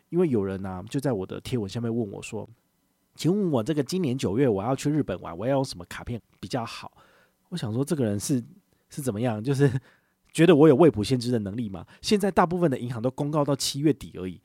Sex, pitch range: male, 105-145 Hz